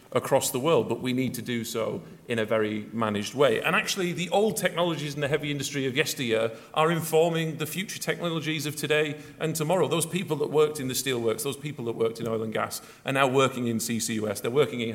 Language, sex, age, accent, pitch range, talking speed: English, male, 40-59, British, 115-150 Hz, 230 wpm